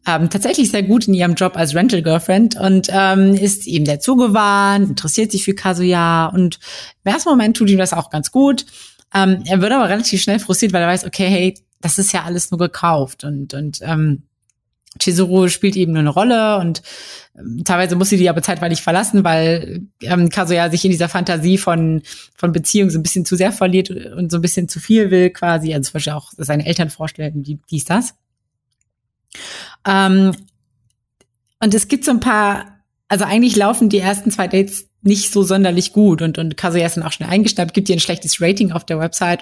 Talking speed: 200 wpm